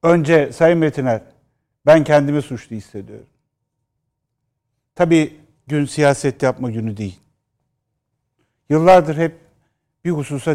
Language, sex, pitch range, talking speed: Turkish, male, 130-170 Hz, 95 wpm